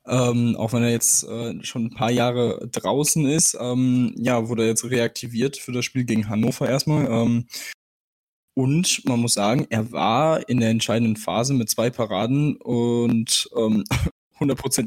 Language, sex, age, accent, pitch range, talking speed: German, male, 10-29, German, 115-130 Hz, 160 wpm